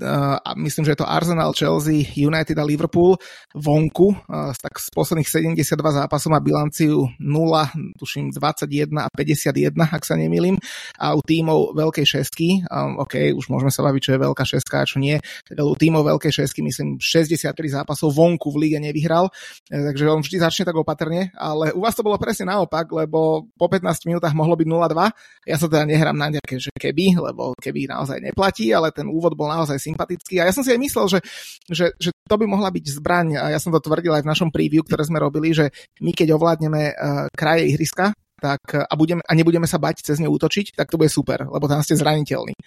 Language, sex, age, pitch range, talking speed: Slovak, male, 20-39, 150-170 Hz, 200 wpm